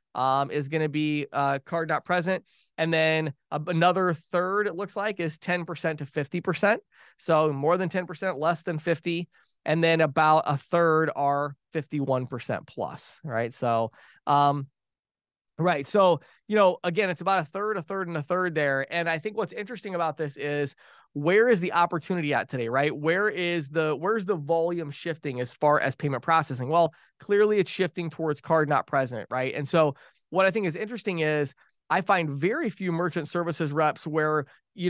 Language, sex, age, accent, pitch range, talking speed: English, male, 20-39, American, 145-180 Hz, 180 wpm